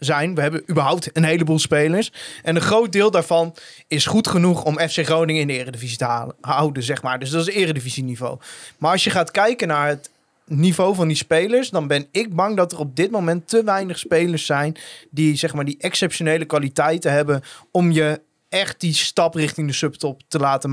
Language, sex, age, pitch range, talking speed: Dutch, male, 20-39, 145-170 Hz, 210 wpm